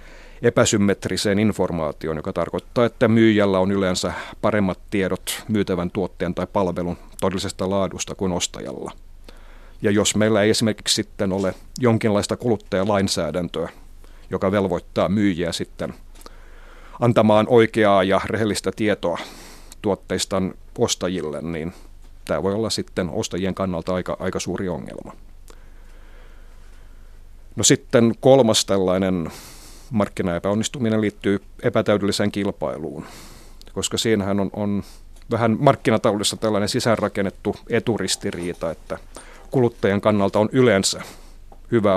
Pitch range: 90-110 Hz